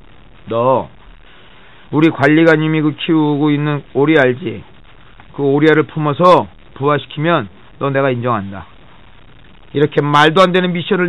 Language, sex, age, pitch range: Korean, male, 40-59, 125-160 Hz